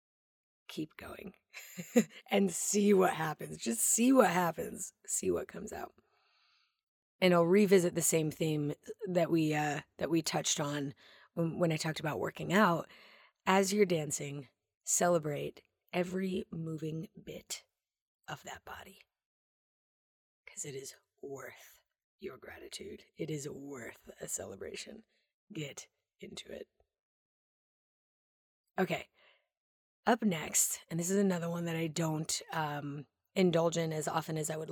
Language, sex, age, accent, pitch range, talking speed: English, female, 30-49, American, 150-195 Hz, 130 wpm